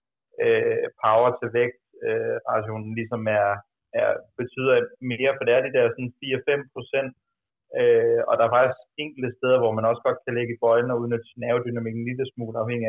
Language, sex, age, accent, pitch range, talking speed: Danish, male, 30-49, native, 115-135 Hz, 185 wpm